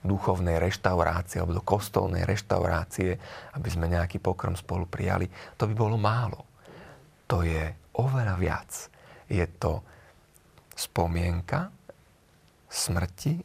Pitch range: 85-110 Hz